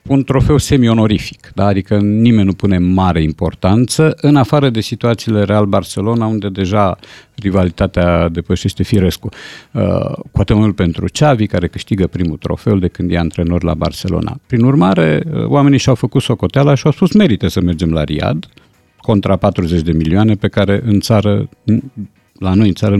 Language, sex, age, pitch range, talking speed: Romanian, male, 50-69, 90-120 Hz, 165 wpm